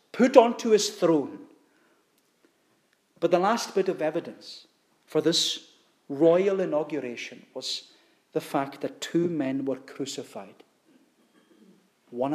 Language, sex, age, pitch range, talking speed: English, male, 40-59, 150-205 Hz, 110 wpm